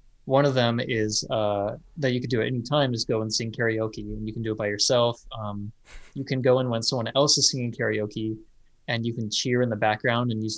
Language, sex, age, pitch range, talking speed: English, male, 20-39, 110-125 Hz, 250 wpm